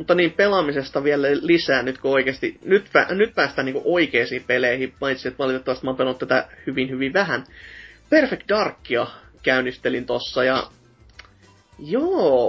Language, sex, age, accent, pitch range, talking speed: Finnish, male, 30-49, native, 130-190 Hz, 150 wpm